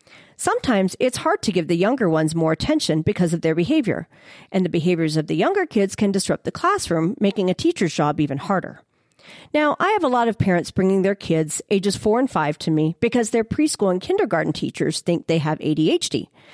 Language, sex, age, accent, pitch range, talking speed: English, female, 40-59, American, 165-270 Hz, 205 wpm